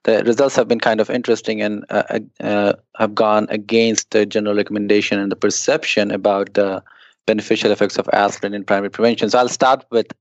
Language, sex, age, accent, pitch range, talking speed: English, male, 20-39, Indian, 105-115 Hz, 190 wpm